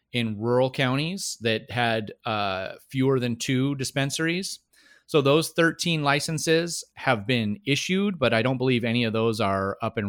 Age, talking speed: 30-49, 160 wpm